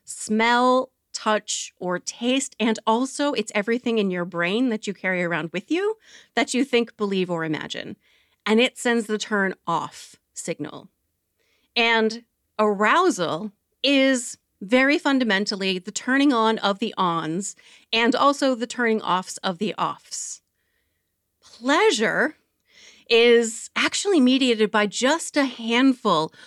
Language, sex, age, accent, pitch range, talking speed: English, female, 30-49, American, 210-260 Hz, 130 wpm